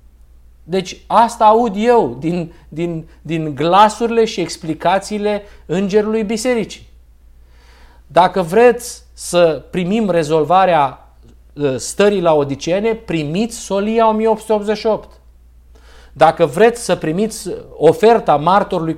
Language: Romanian